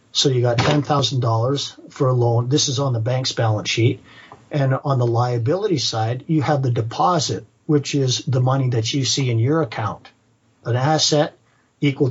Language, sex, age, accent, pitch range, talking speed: English, male, 50-69, American, 115-140 Hz, 180 wpm